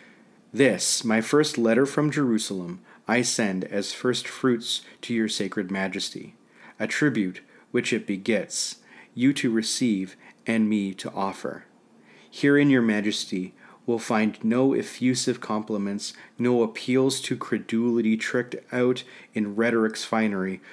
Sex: male